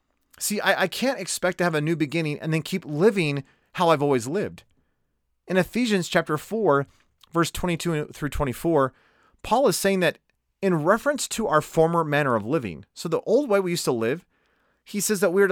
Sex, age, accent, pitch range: male, 30-49, American, 150-195 Hz